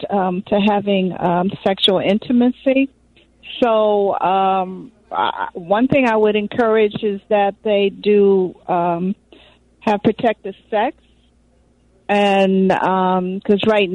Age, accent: 50-69, American